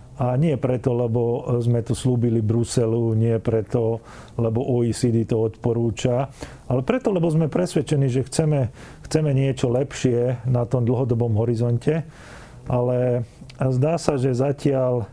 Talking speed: 130 wpm